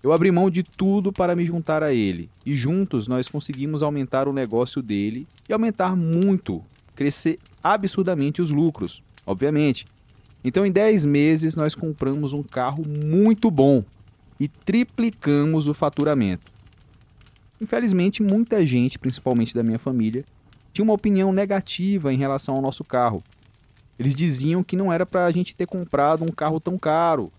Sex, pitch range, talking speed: male, 125-190 Hz, 155 wpm